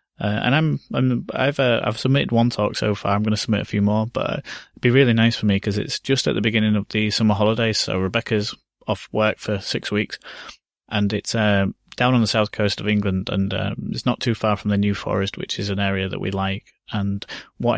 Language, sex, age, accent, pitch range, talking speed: English, male, 20-39, British, 100-110 Hz, 255 wpm